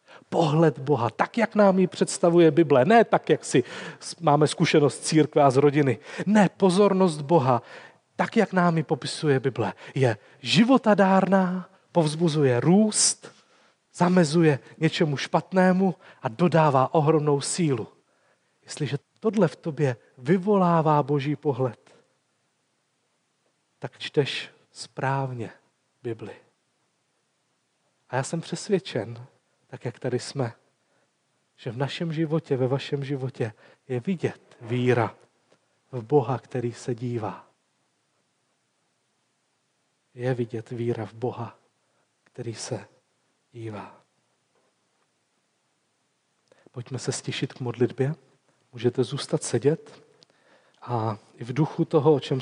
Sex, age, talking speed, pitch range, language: male, 40-59, 110 wpm, 125-165 Hz, Czech